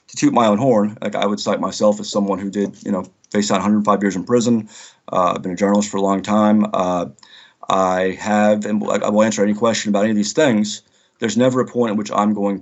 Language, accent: English, American